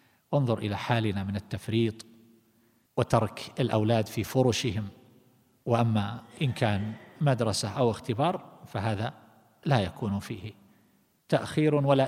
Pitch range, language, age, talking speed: 110-140 Hz, Arabic, 50-69, 105 wpm